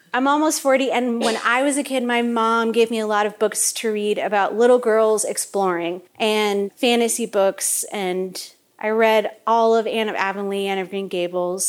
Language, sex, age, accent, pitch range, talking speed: English, female, 30-49, American, 200-240 Hz, 195 wpm